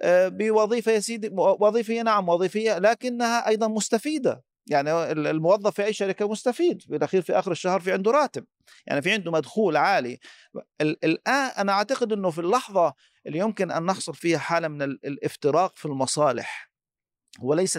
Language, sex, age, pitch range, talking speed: Arabic, male, 50-69, 160-210 Hz, 145 wpm